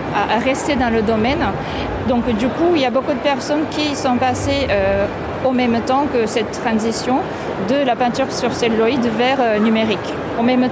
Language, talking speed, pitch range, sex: French, 190 wpm, 210-260 Hz, female